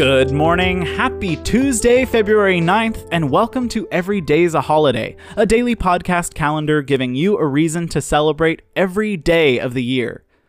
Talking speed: 160 wpm